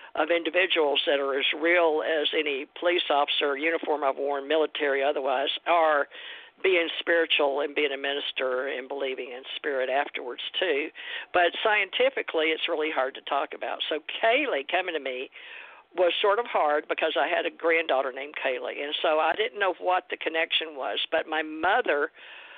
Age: 50-69